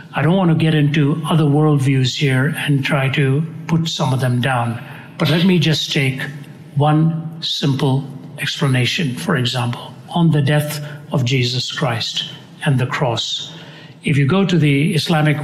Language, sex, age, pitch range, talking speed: English, male, 60-79, 135-160 Hz, 165 wpm